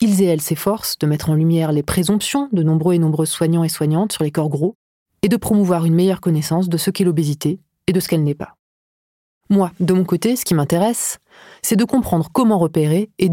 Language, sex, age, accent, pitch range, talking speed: French, female, 30-49, French, 155-200 Hz, 225 wpm